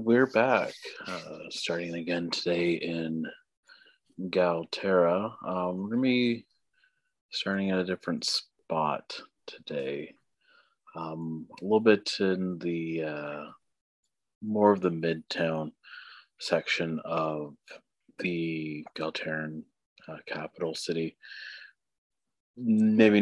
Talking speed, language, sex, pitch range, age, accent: 95 wpm, English, male, 80-95 Hz, 30-49, American